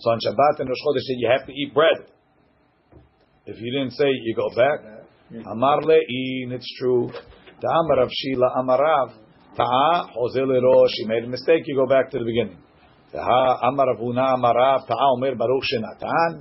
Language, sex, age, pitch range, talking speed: English, male, 50-69, 120-140 Hz, 185 wpm